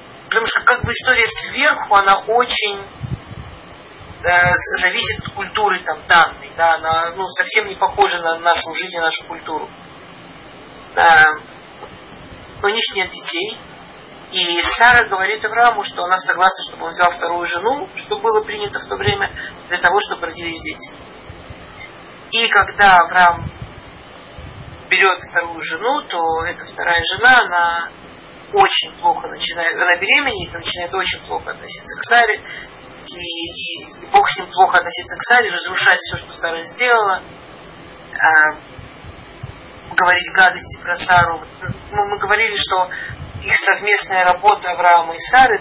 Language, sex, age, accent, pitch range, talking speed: Russian, male, 40-59, native, 170-215 Hz, 140 wpm